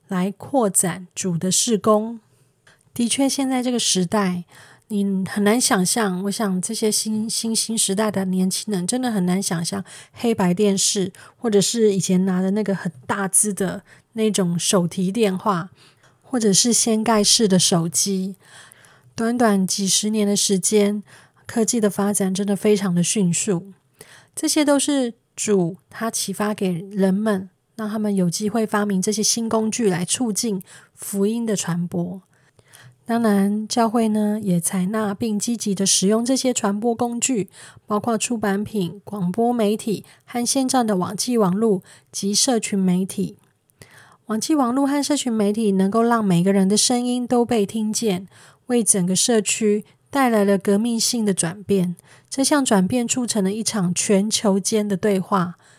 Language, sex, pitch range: Chinese, female, 185-225 Hz